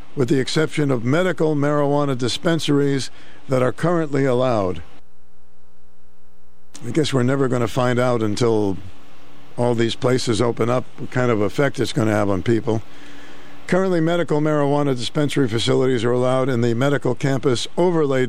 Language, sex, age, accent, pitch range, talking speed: English, male, 60-79, American, 120-145 Hz, 155 wpm